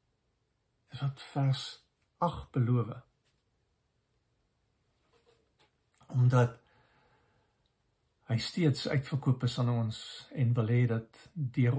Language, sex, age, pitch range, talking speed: English, male, 60-79, 125-145 Hz, 75 wpm